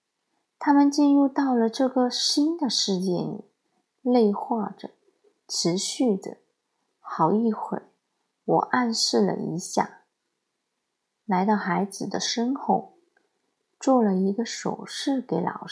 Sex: female